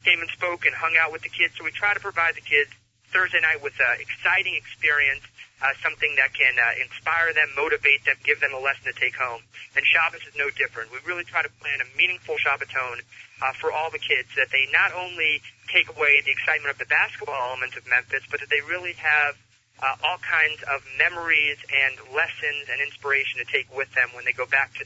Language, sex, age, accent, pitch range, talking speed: English, male, 30-49, American, 130-165 Hz, 220 wpm